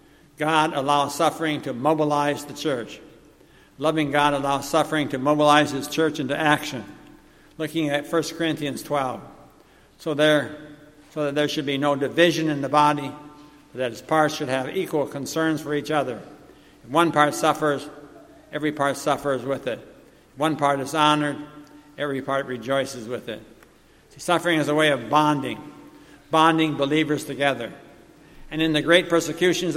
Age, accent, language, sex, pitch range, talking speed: 60-79, American, English, male, 145-160 Hz, 155 wpm